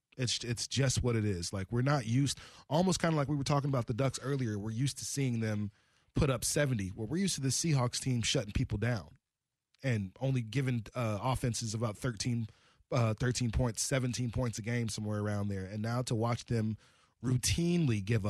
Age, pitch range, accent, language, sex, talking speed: 20-39, 115-135 Hz, American, English, male, 205 wpm